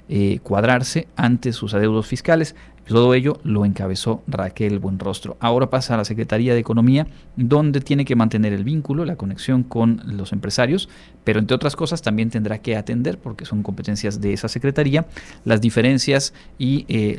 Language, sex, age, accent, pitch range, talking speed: Spanish, male, 40-59, Mexican, 105-135 Hz, 170 wpm